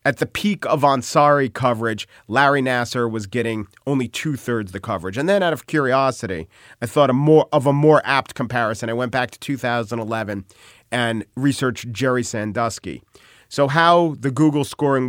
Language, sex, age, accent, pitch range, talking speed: English, male, 40-59, American, 110-140 Hz, 165 wpm